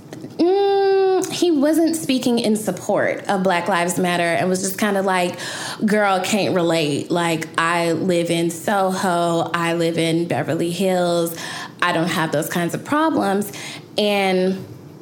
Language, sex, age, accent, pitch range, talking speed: English, female, 10-29, American, 170-210 Hz, 150 wpm